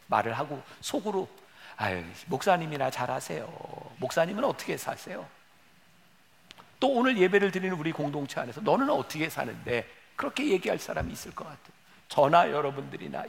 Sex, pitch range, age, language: male, 185-265 Hz, 50-69, Korean